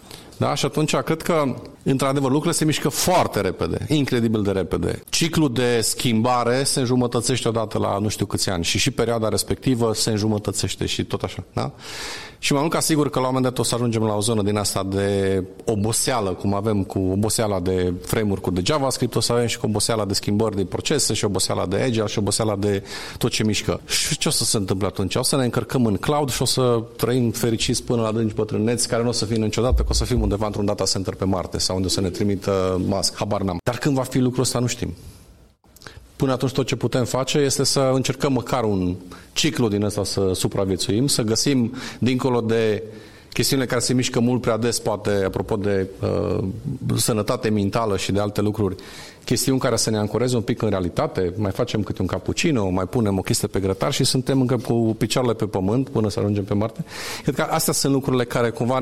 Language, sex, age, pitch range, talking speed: Romanian, male, 40-59, 100-130 Hz, 215 wpm